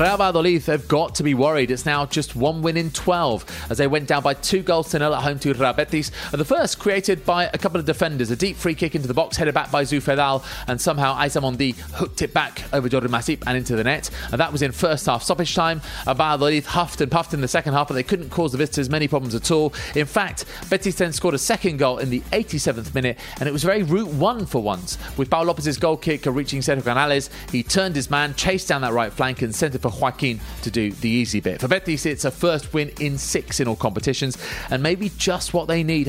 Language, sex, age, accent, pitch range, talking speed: English, male, 30-49, British, 130-170 Hz, 250 wpm